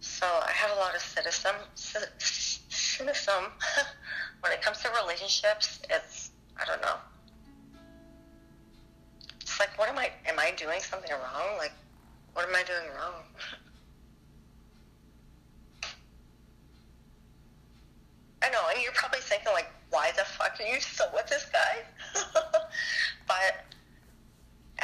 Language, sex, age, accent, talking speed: English, female, 30-49, American, 120 wpm